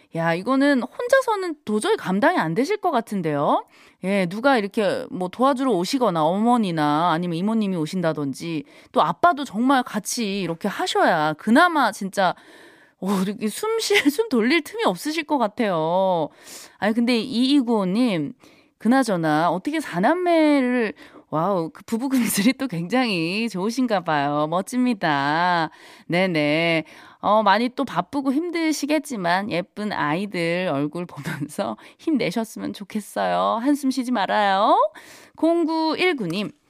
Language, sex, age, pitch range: Korean, female, 20-39, 180-285 Hz